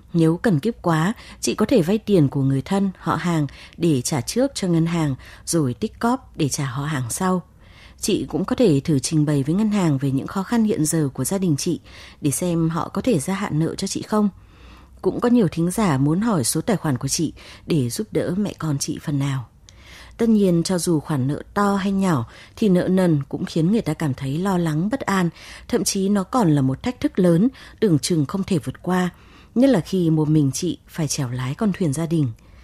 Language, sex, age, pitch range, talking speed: Vietnamese, female, 20-39, 145-195 Hz, 235 wpm